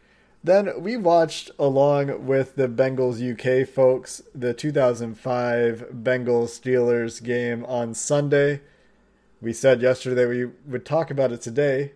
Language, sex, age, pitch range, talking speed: English, male, 20-39, 120-145 Hz, 115 wpm